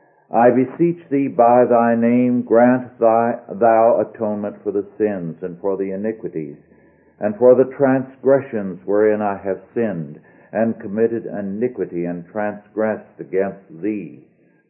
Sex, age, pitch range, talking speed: male, 60-79, 100-125 Hz, 125 wpm